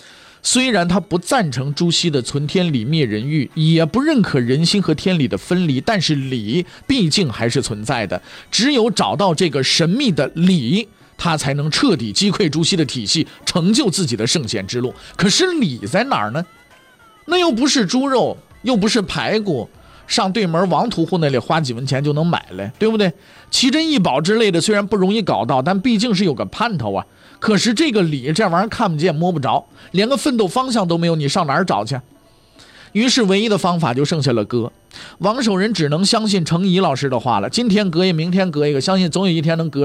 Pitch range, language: 140-205 Hz, Chinese